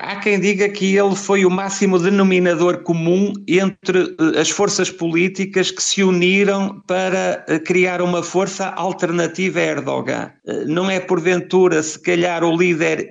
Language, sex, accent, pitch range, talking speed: Portuguese, male, Portuguese, 170-190 Hz, 140 wpm